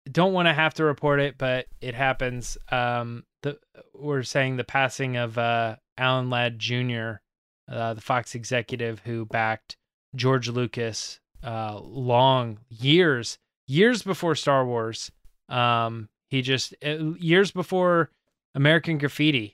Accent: American